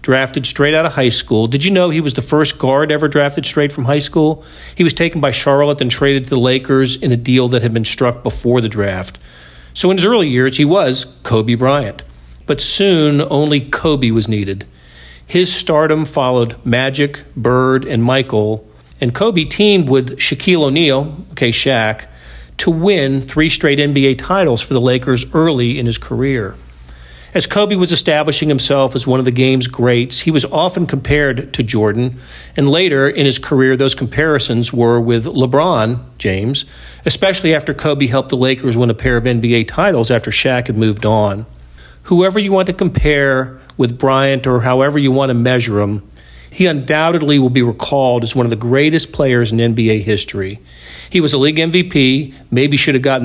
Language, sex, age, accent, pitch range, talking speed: English, male, 40-59, American, 120-145 Hz, 185 wpm